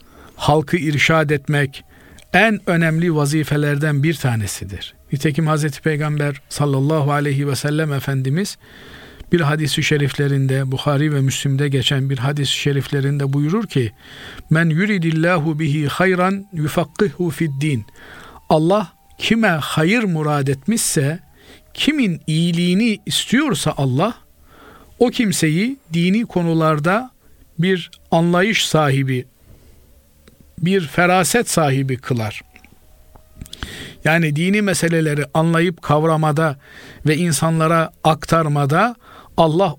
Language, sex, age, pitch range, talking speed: Turkish, male, 50-69, 140-180 Hz, 95 wpm